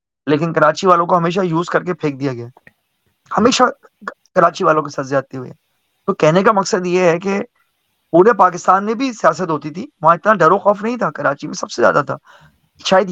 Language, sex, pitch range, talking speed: Urdu, male, 150-195 Hz, 210 wpm